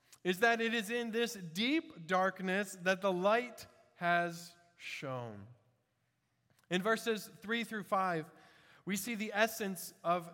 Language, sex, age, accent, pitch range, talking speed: English, male, 20-39, American, 155-230 Hz, 130 wpm